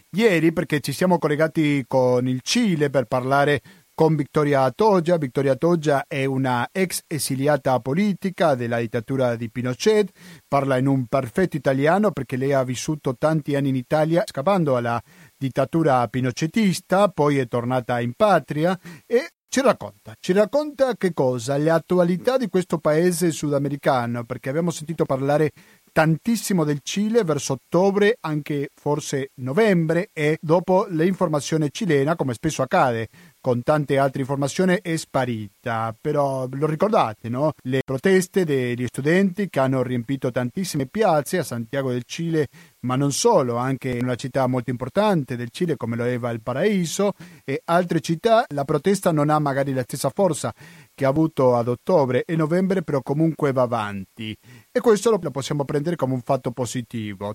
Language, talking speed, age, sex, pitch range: Italian, 155 wpm, 40-59, male, 130-175 Hz